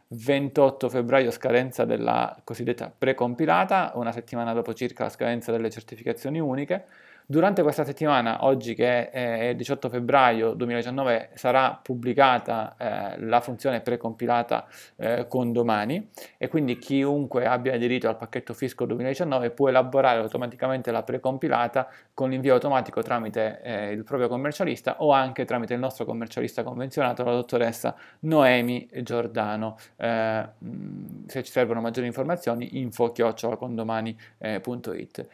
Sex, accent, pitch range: male, native, 115-130 Hz